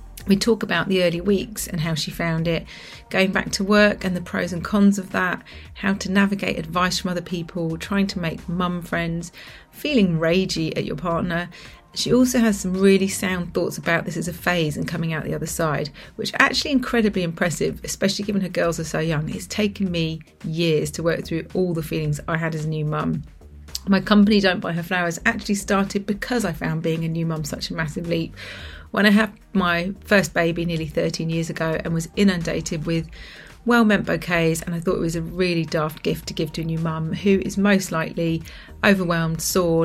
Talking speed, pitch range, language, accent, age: 210 wpm, 165-195 Hz, English, British, 30-49